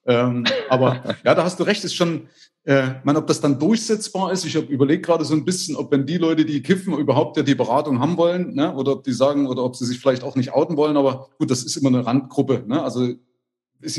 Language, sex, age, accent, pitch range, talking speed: German, male, 30-49, German, 125-175 Hz, 255 wpm